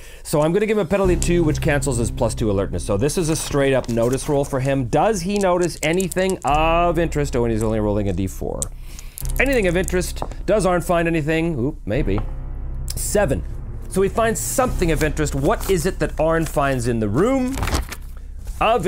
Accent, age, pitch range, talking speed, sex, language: American, 40-59, 95-155 Hz, 205 wpm, male, English